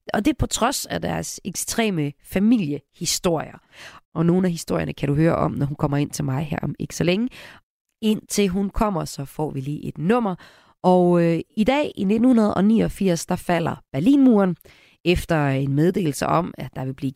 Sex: female